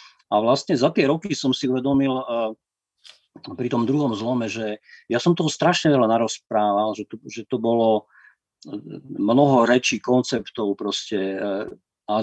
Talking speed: 140 wpm